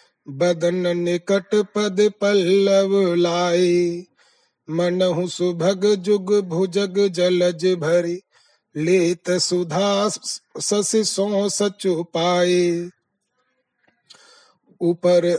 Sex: male